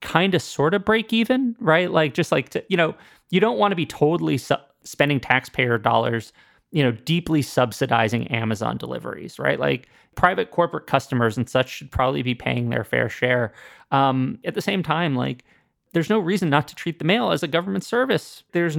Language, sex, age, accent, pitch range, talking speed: English, male, 30-49, American, 125-165 Hz, 190 wpm